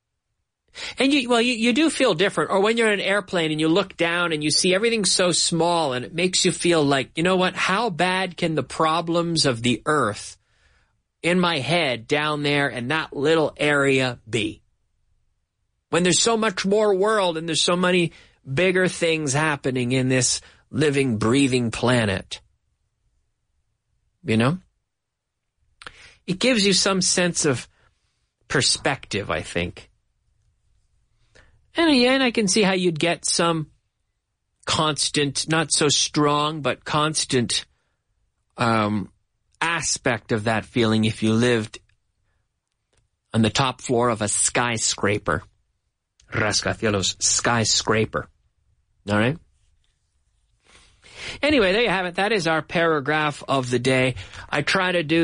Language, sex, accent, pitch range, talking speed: English, male, American, 115-180 Hz, 140 wpm